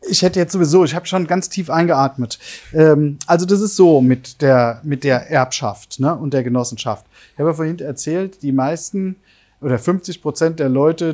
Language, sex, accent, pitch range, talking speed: German, male, German, 130-165 Hz, 195 wpm